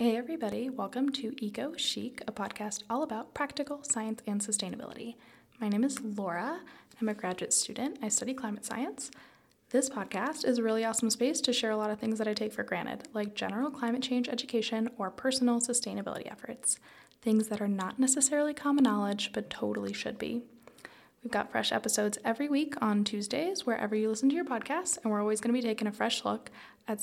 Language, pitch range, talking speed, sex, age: English, 210-255 Hz, 200 wpm, female, 20-39